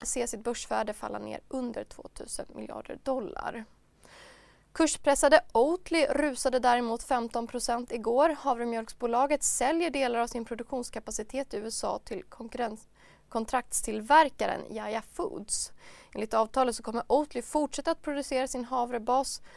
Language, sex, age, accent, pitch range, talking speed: Swedish, female, 20-39, native, 230-285 Hz, 115 wpm